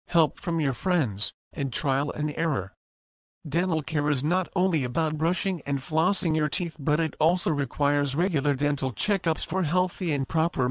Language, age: English, 50-69